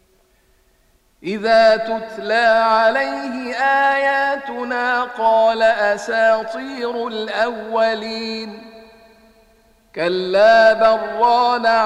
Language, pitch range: Arabic, 225-245 Hz